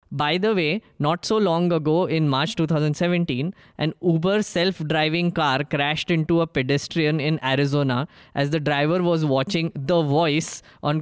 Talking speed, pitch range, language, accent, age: 155 wpm, 145-175 Hz, English, Indian, 20-39